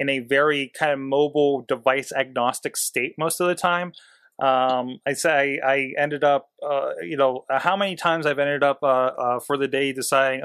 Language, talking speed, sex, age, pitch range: English, 195 wpm, male, 30-49, 135-160 Hz